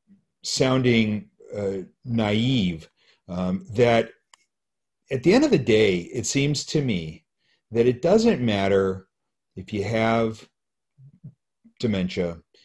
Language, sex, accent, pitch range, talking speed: English, male, American, 95-125 Hz, 110 wpm